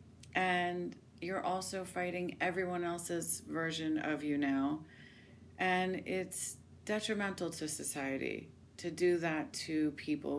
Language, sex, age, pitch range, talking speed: English, female, 30-49, 145-170 Hz, 115 wpm